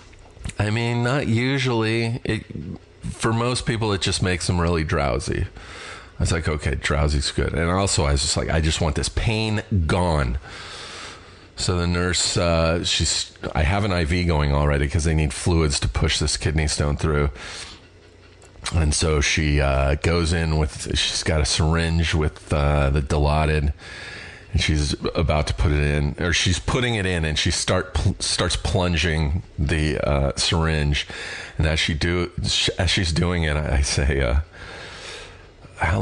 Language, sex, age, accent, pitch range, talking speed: English, male, 40-59, American, 75-95 Hz, 170 wpm